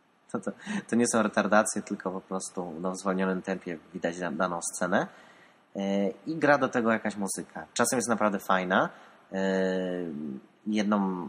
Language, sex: Polish, male